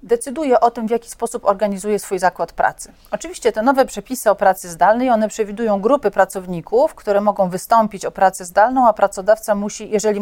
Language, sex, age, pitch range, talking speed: Polish, female, 40-59, 195-230 Hz, 180 wpm